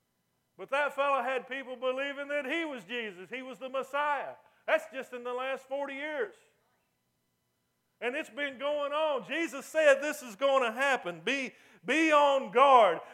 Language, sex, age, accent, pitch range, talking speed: English, male, 50-69, American, 235-280 Hz, 170 wpm